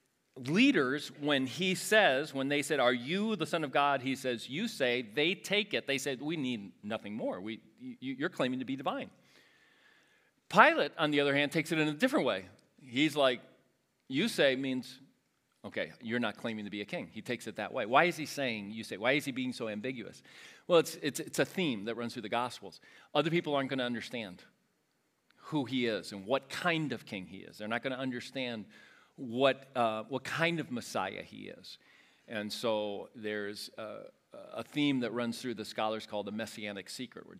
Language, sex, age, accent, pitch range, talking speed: English, male, 40-59, American, 110-150 Hz, 210 wpm